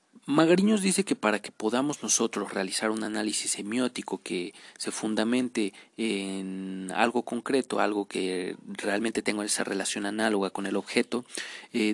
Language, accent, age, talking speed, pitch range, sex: Spanish, Mexican, 40-59, 140 wpm, 100-115 Hz, male